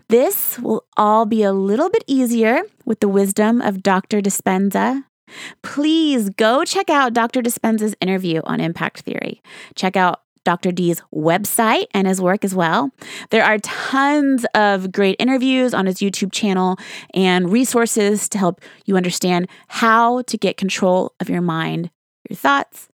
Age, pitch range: 20-39, 180-235 Hz